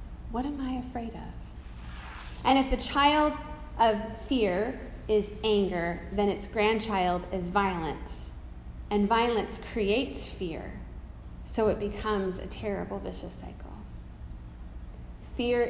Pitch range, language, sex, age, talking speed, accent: 180-240 Hz, English, female, 30-49, 115 wpm, American